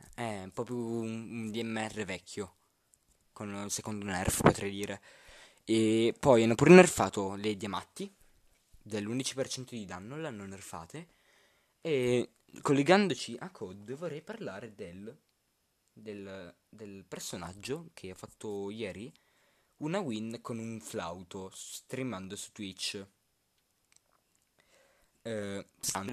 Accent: native